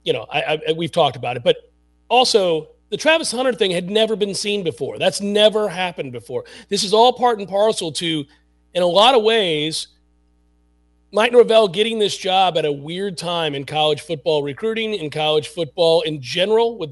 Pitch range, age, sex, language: 155-210 Hz, 40-59, male, English